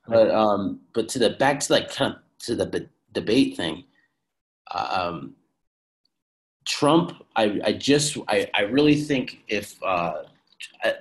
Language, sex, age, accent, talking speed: English, male, 30-49, American, 155 wpm